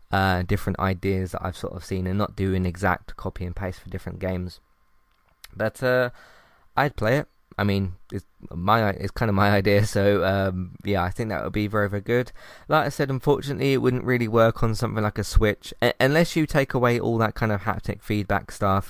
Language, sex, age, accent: English, male, 20-39, British